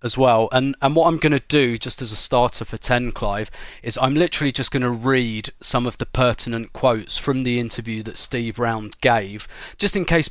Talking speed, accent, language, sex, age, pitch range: 220 wpm, British, English, male, 30-49, 115-145 Hz